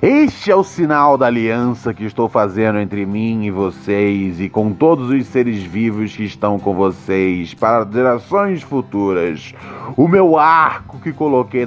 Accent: Brazilian